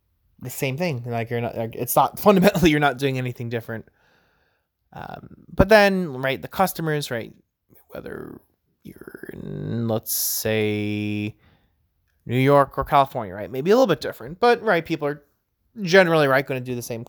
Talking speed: 160 wpm